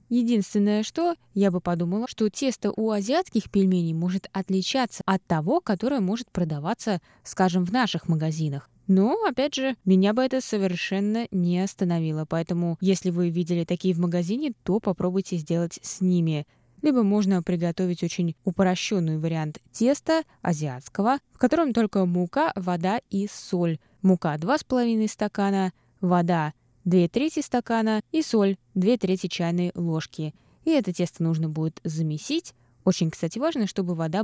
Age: 20-39